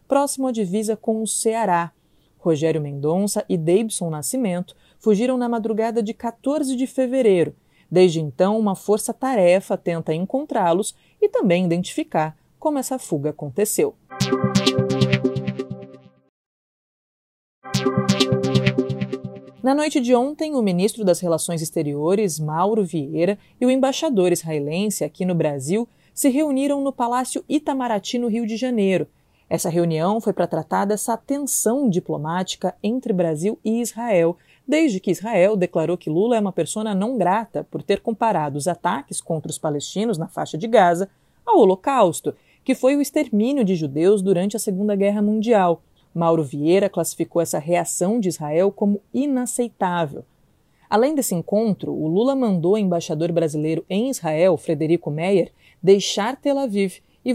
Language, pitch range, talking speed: English, 165-235 Hz, 140 wpm